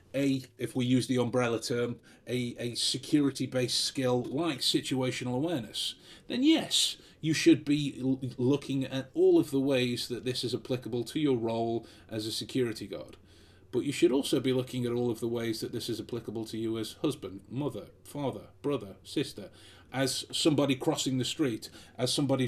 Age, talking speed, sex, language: 30-49, 175 wpm, male, English